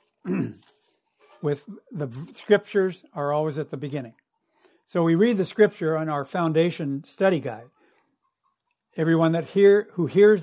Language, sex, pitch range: English, male, 155-200 Hz